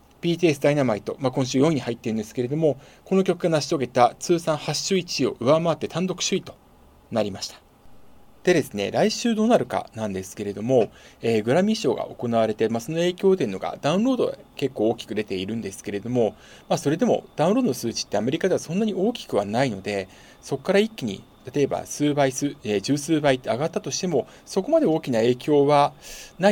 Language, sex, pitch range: Japanese, male, 115-180 Hz